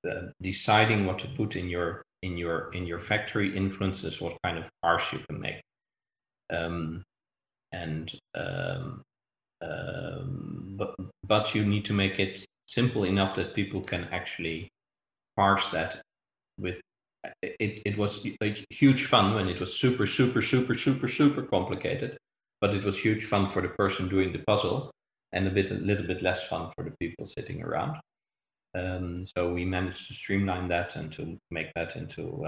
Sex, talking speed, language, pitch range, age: male, 170 wpm, English, 90-105 Hz, 40-59